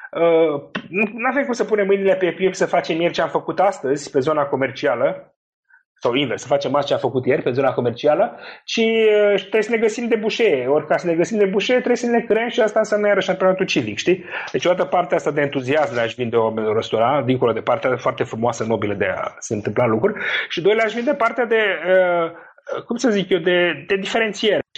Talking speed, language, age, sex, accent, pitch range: 225 wpm, Romanian, 30-49, male, native, 150-215 Hz